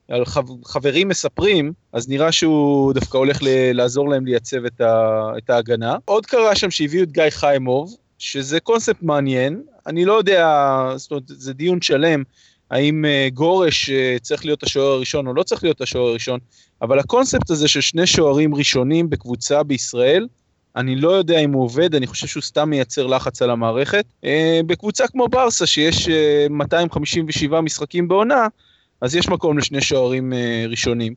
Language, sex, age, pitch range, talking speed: Hebrew, male, 20-39, 125-160 Hz, 165 wpm